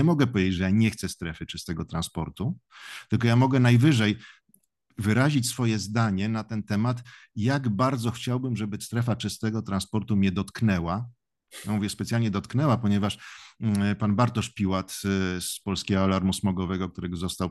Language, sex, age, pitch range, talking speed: Polish, male, 50-69, 95-115 Hz, 145 wpm